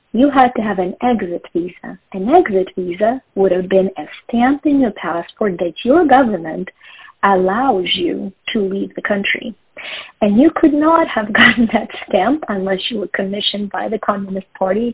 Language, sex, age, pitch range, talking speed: English, female, 40-59, 190-240 Hz, 175 wpm